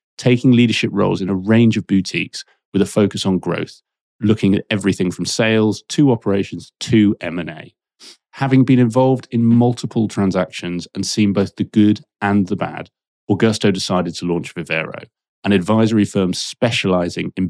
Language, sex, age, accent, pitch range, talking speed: English, male, 30-49, British, 95-115 Hz, 160 wpm